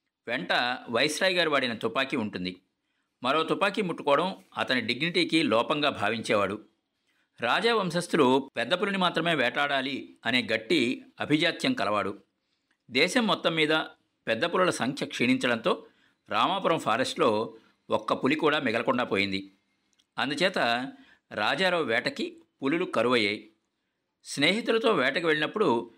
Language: Telugu